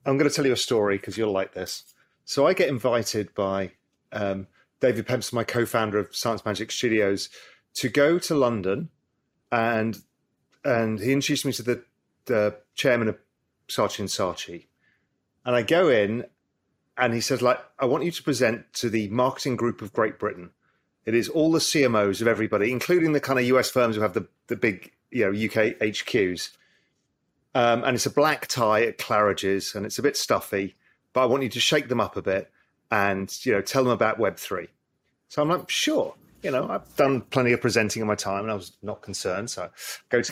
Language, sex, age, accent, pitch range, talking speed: English, male, 40-59, British, 105-135 Hz, 205 wpm